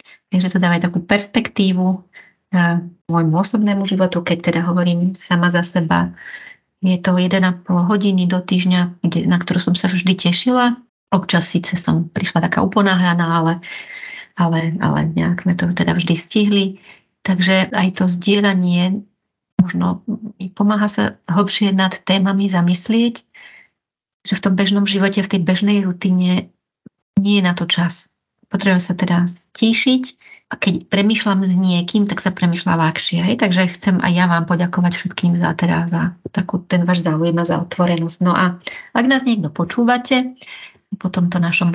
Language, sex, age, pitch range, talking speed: Slovak, female, 30-49, 175-200 Hz, 150 wpm